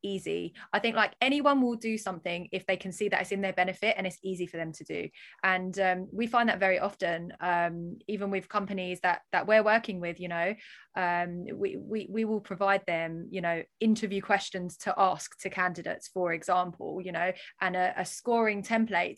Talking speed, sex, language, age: 205 wpm, female, English, 20-39